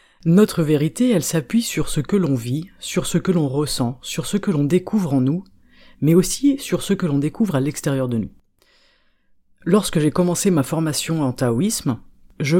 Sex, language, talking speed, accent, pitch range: female, French, 190 wpm, French, 130-180 Hz